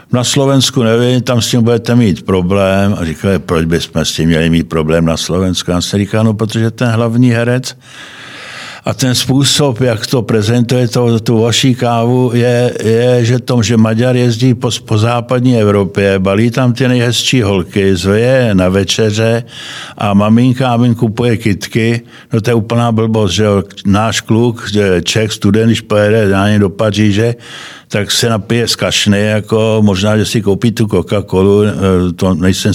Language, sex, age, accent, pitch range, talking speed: Czech, male, 60-79, native, 95-120 Hz, 170 wpm